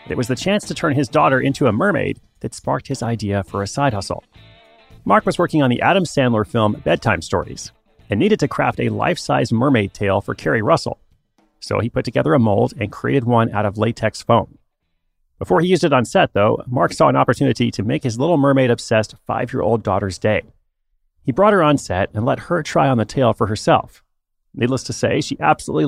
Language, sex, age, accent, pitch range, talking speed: English, male, 30-49, American, 105-135 Hz, 210 wpm